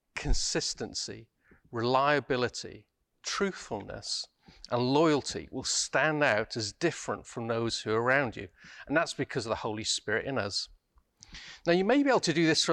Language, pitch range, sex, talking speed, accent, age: English, 110-150 Hz, male, 160 wpm, British, 40-59